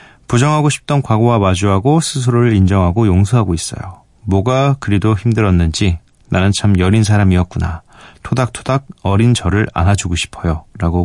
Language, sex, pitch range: Korean, male, 95-125 Hz